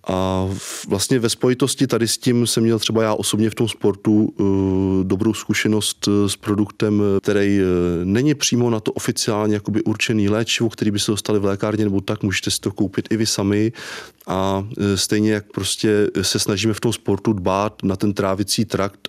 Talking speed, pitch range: 180 wpm, 95-105 Hz